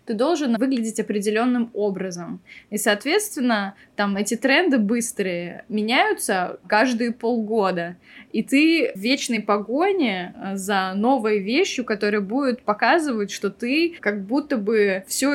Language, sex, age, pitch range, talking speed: Russian, female, 20-39, 195-240 Hz, 120 wpm